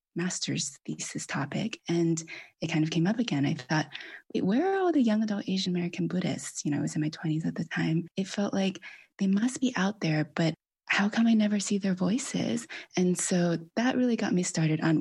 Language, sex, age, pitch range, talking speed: English, female, 20-39, 155-190 Hz, 220 wpm